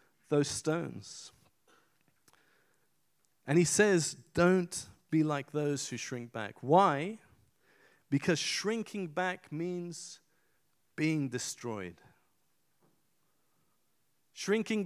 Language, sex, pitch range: English, male, 145-200 Hz